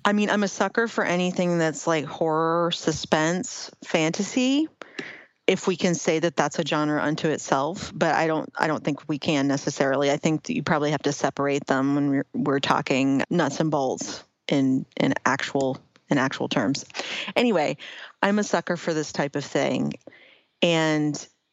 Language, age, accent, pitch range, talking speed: English, 30-49, American, 150-180 Hz, 175 wpm